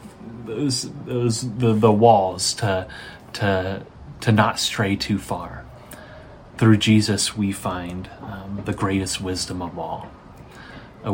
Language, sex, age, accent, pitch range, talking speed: English, male, 30-49, American, 100-125 Hz, 125 wpm